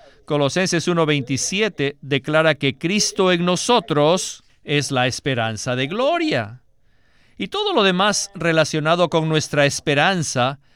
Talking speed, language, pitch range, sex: 110 wpm, Spanish, 135-200 Hz, male